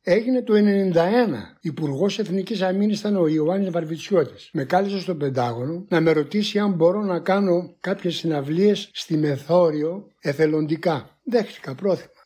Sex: male